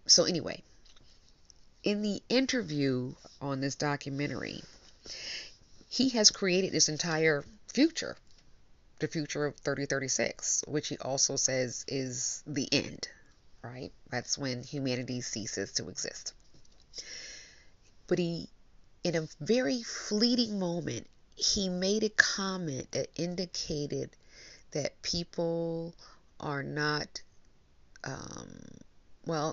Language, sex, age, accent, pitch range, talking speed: English, female, 40-59, American, 130-170 Hz, 105 wpm